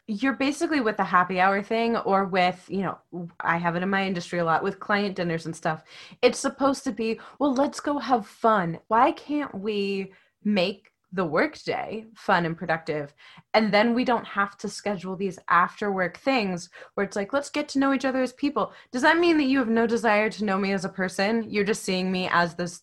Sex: female